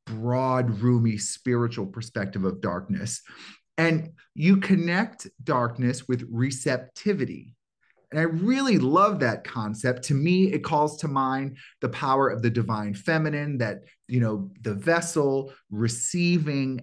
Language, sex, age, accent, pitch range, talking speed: English, male, 30-49, American, 110-135 Hz, 130 wpm